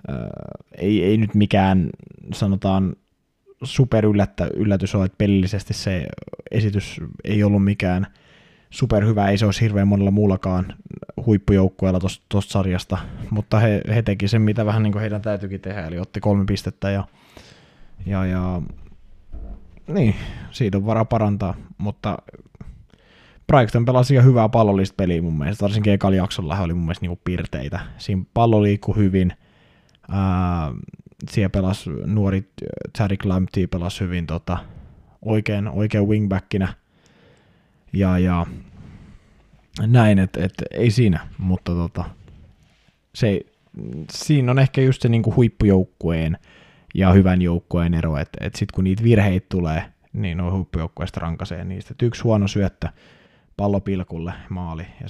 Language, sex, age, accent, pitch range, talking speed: Finnish, male, 20-39, native, 90-105 Hz, 135 wpm